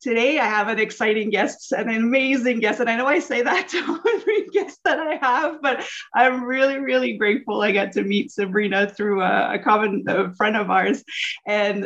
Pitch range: 200-245 Hz